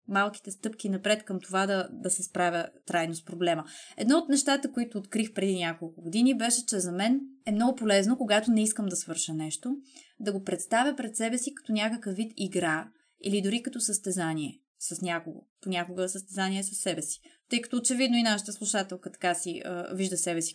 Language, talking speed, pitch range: Bulgarian, 195 wpm, 190-245 Hz